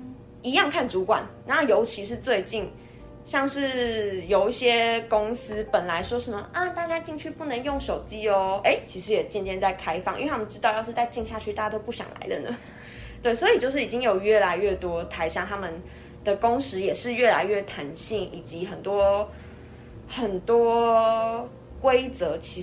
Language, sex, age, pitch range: Chinese, female, 20-39, 180-240 Hz